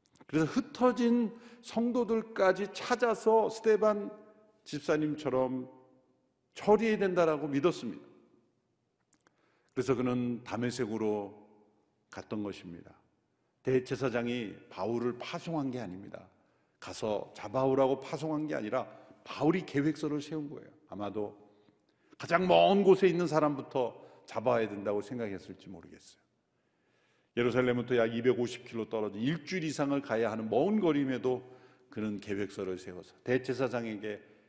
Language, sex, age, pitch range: Korean, male, 50-69, 115-185 Hz